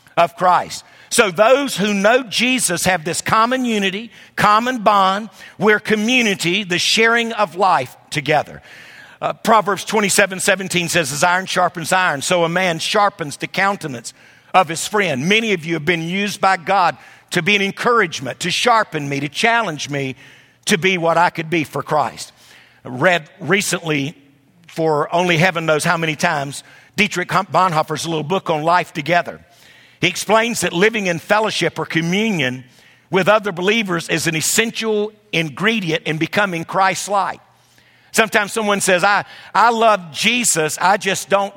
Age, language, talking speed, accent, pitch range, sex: 50-69, English, 155 wpm, American, 165-215 Hz, male